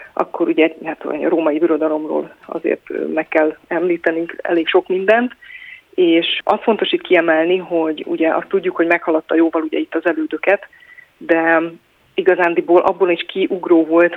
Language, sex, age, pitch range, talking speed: Hungarian, female, 30-49, 165-200 Hz, 150 wpm